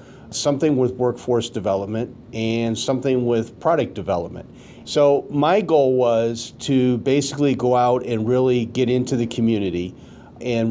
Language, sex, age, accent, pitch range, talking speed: English, male, 40-59, American, 110-125 Hz, 135 wpm